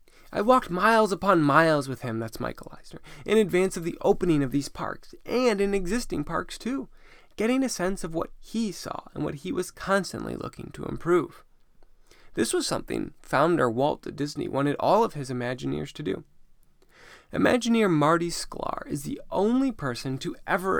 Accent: American